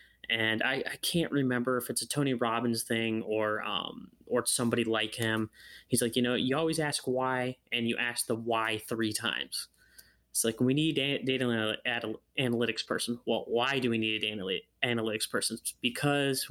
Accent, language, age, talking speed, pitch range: American, English, 20-39, 180 wpm, 115-125 Hz